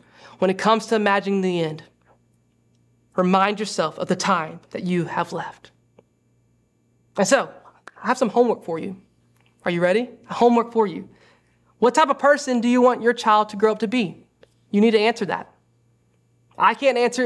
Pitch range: 175-230 Hz